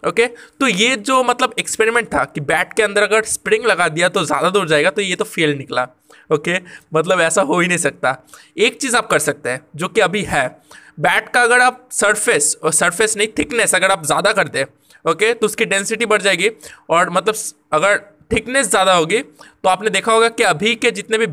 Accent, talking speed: native, 220 wpm